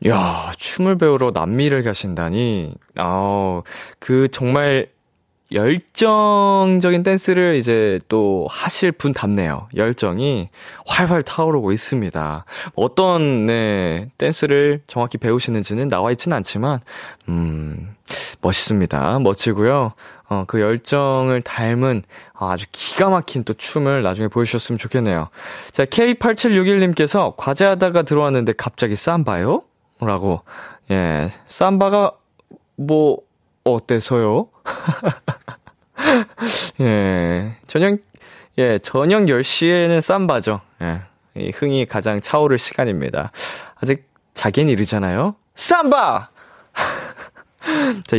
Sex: male